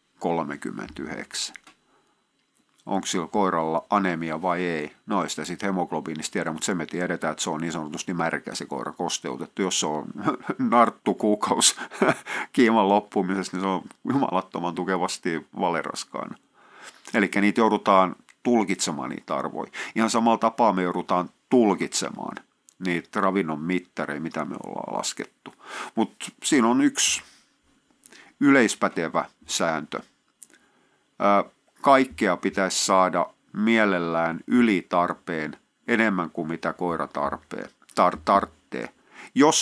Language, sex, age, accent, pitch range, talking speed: Finnish, male, 50-69, native, 85-110 Hz, 115 wpm